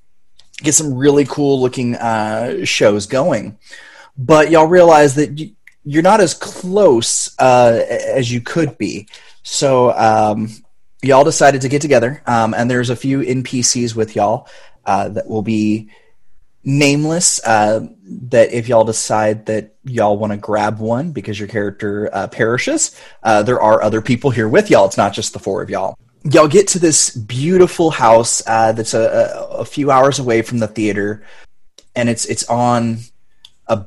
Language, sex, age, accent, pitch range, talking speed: English, male, 30-49, American, 110-140 Hz, 165 wpm